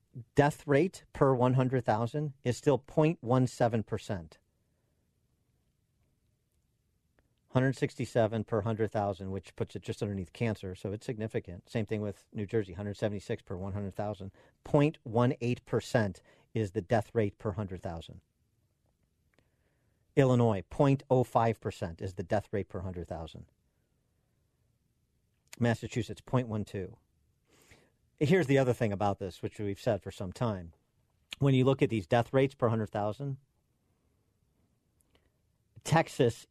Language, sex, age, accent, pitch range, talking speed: English, male, 50-69, American, 100-130 Hz, 115 wpm